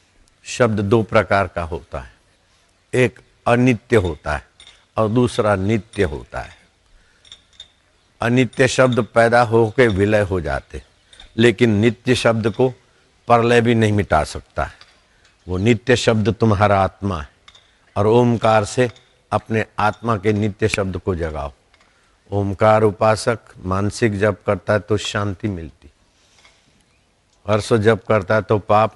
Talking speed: 125 wpm